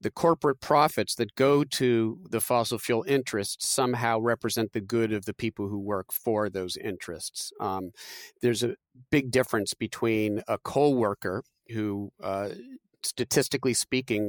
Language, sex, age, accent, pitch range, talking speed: English, male, 40-59, American, 105-135 Hz, 145 wpm